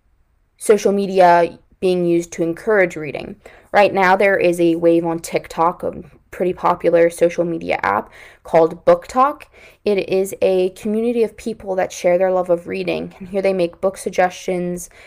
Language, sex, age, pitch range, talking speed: English, female, 20-39, 170-200 Hz, 165 wpm